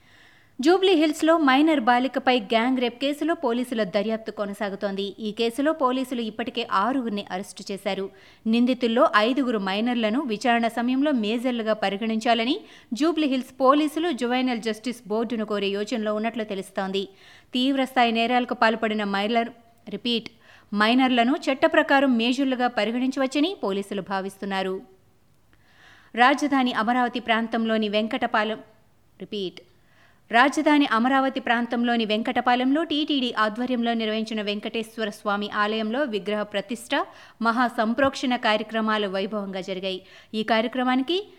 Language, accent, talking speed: Telugu, native, 90 wpm